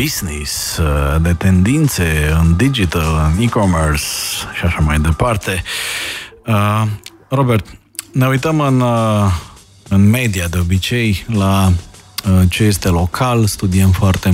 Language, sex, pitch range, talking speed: Romanian, male, 85-105 Hz, 105 wpm